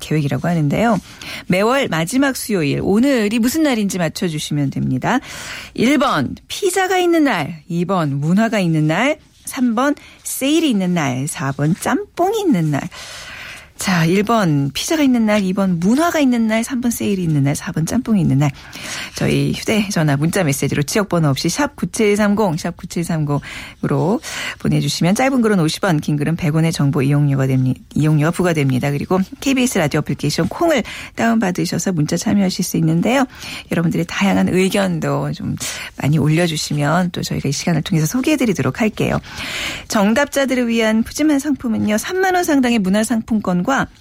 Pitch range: 155-240 Hz